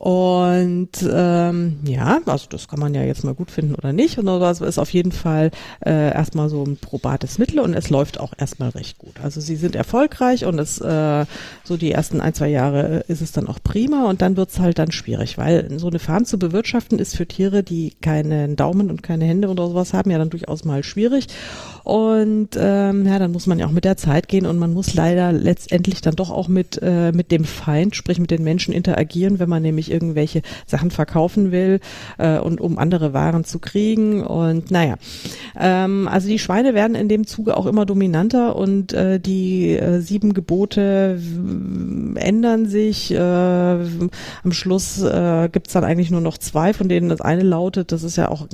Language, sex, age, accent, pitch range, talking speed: German, female, 50-69, German, 160-195 Hz, 205 wpm